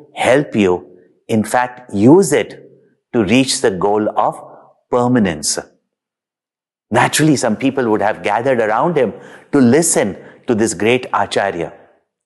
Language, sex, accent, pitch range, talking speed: English, male, Indian, 115-170 Hz, 125 wpm